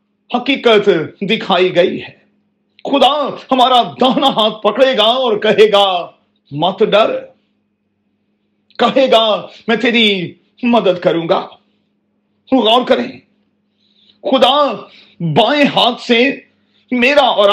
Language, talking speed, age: Urdu, 100 wpm, 40-59